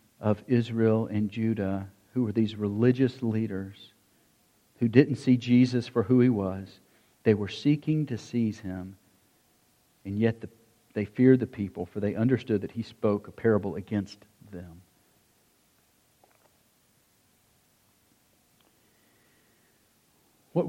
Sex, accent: male, American